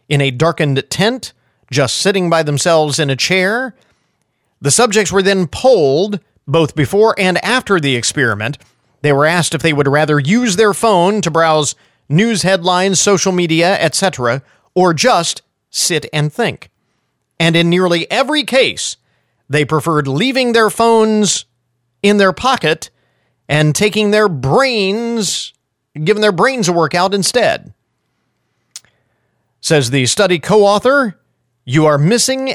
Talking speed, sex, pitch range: 135 wpm, male, 130-195 Hz